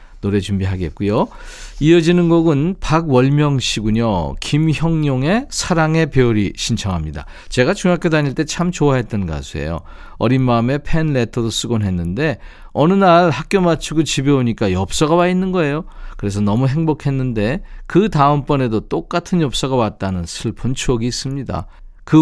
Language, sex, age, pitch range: Korean, male, 40-59, 105-165 Hz